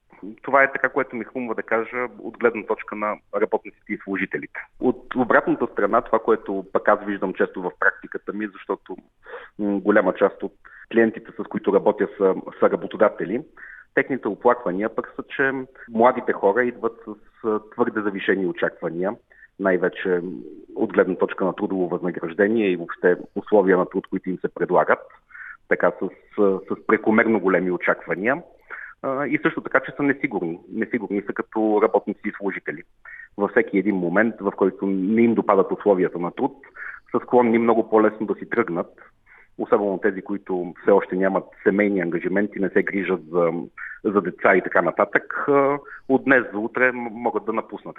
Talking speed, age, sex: 155 wpm, 40-59, male